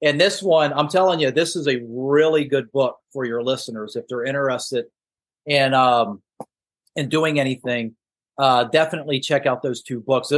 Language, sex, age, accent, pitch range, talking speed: English, male, 40-59, American, 125-150 Hz, 175 wpm